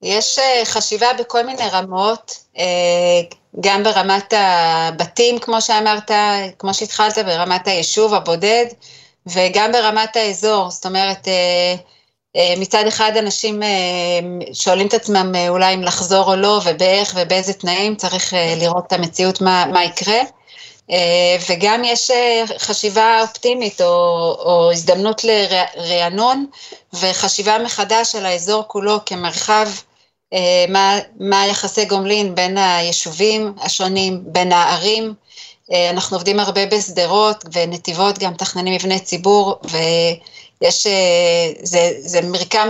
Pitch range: 175-210 Hz